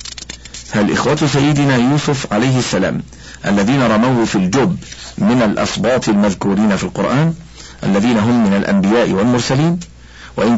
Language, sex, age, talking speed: Arabic, male, 50-69, 120 wpm